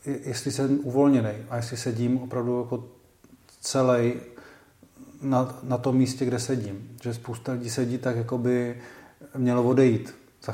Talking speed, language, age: 140 wpm, Czech, 40-59